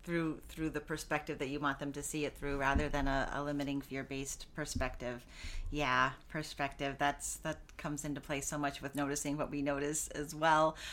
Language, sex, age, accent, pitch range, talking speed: English, female, 40-59, American, 145-190 Hz, 190 wpm